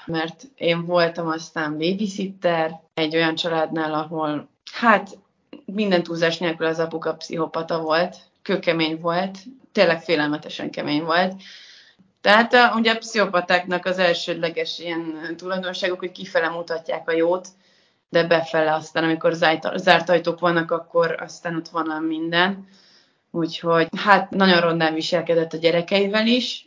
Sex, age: female, 30-49